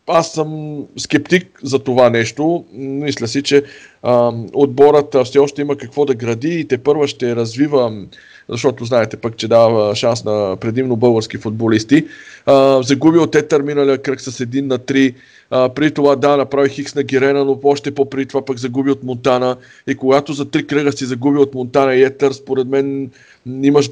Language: Bulgarian